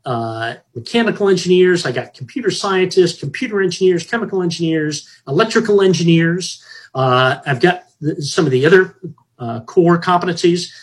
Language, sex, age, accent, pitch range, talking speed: English, male, 40-59, American, 130-185 Hz, 135 wpm